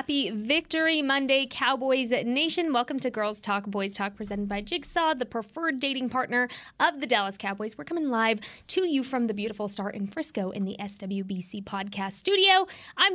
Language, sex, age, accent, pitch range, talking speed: English, female, 20-39, American, 215-280 Hz, 180 wpm